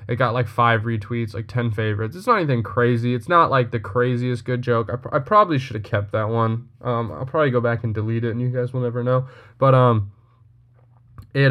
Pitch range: 115-135 Hz